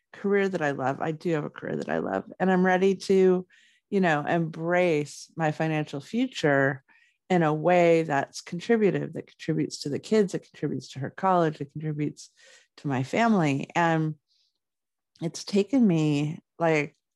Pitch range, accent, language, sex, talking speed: 155-225 Hz, American, English, female, 165 wpm